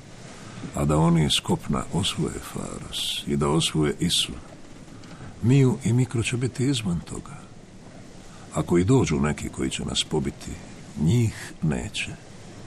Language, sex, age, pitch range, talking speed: Croatian, male, 60-79, 70-100 Hz, 130 wpm